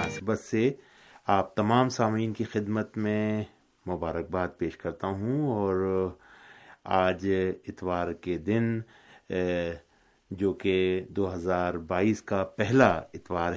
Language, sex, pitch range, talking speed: Urdu, male, 90-110 Hz, 110 wpm